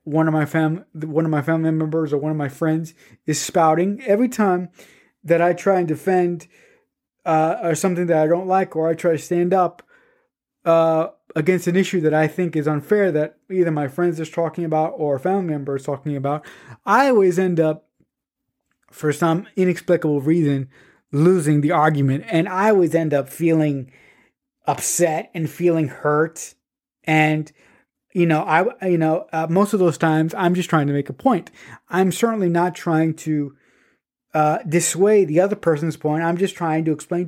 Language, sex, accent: English, male, American